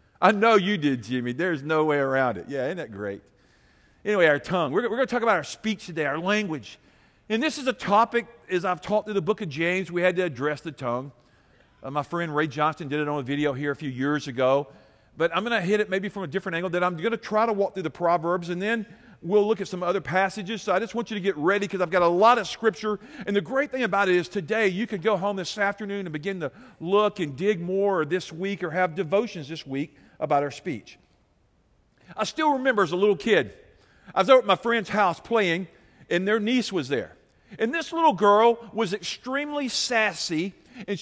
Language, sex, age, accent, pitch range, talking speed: English, male, 50-69, American, 170-230 Hz, 240 wpm